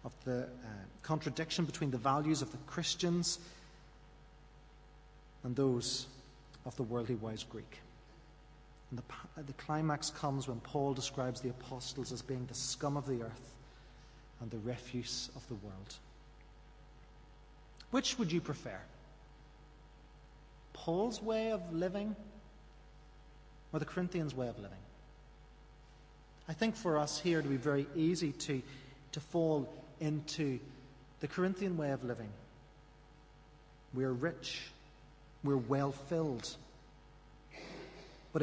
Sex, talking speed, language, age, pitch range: male, 120 wpm, English, 40-59, 135-155 Hz